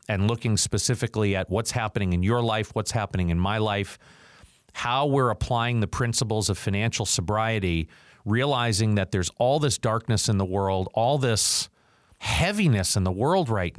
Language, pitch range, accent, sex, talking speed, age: English, 100-130 Hz, American, male, 165 wpm, 40-59